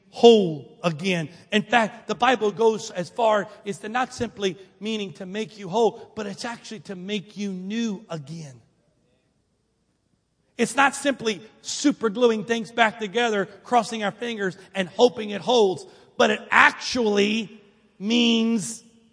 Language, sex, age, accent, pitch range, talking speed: English, male, 40-59, American, 180-220 Hz, 140 wpm